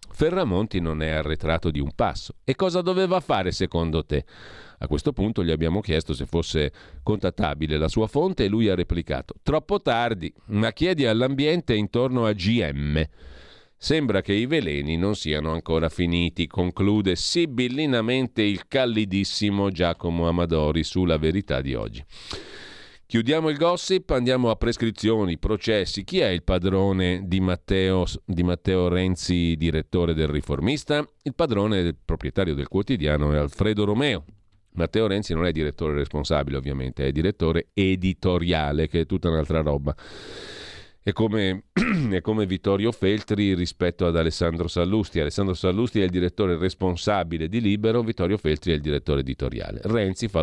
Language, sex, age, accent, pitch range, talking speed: Italian, male, 40-59, native, 80-110 Hz, 145 wpm